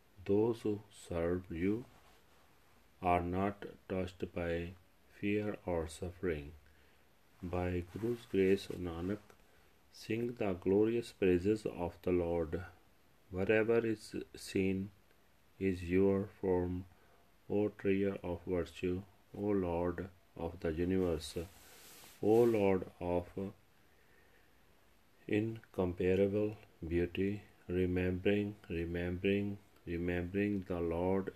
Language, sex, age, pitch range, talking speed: Punjabi, male, 40-59, 85-100 Hz, 90 wpm